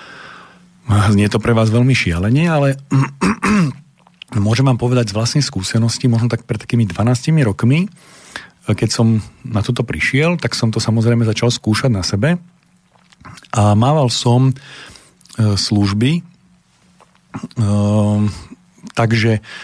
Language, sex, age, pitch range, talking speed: Slovak, male, 40-59, 105-135 Hz, 115 wpm